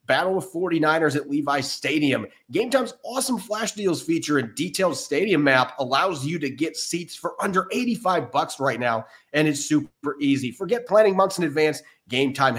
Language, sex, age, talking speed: English, male, 30-49, 170 wpm